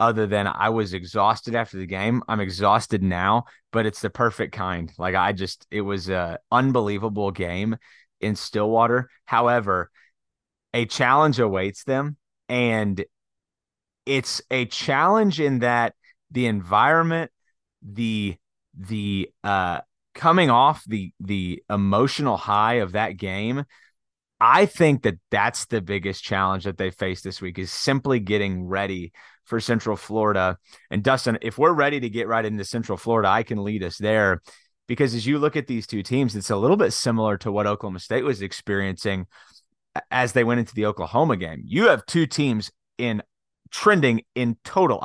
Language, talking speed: English, 160 wpm